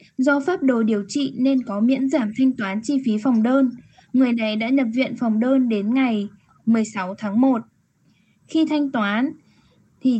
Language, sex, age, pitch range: Japanese, female, 10-29, 215-270 Hz